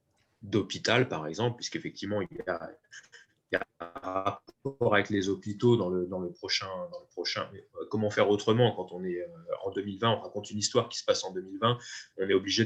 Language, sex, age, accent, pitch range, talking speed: French, male, 30-49, French, 100-135 Hz, 205 wpm